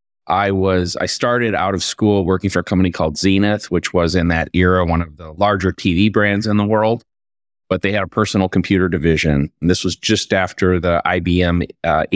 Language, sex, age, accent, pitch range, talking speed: English, male, 30-49, American, 90-105 Hz, 205 wpm